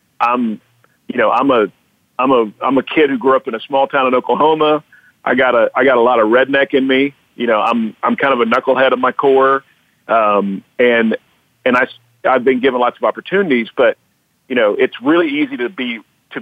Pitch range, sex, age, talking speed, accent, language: 115-140 Hz, male, 50-69, 220 wpm, American, English